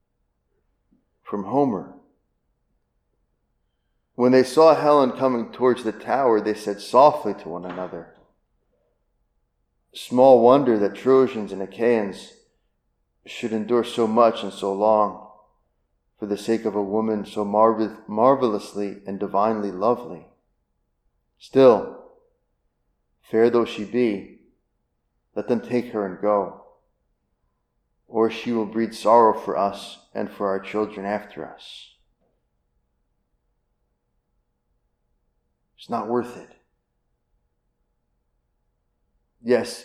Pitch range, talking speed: 70-115 Hz, 105 wpm